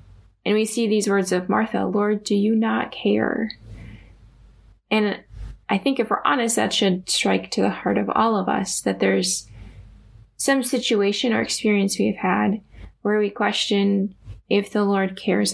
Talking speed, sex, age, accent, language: 165 wpm, female, 10-29, American, English